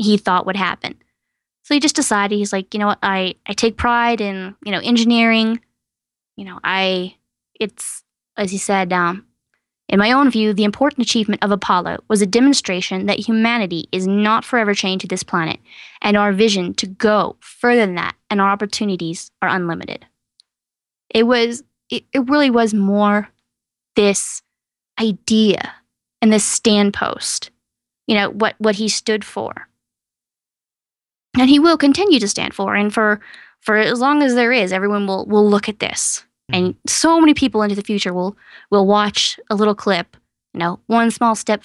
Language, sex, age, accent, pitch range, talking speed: English, female, 10-29, American, 190-225 Hz, 175 wpm